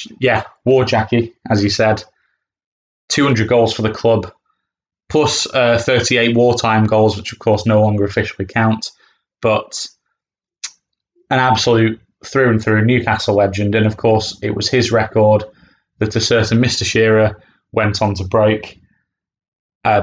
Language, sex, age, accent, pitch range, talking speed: English, male, 20-39, British, 110-120 Hz, 140 wpm